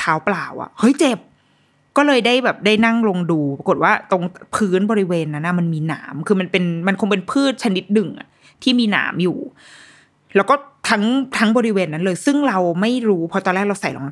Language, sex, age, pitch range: Thai, female, 20-39, 170-240 Hz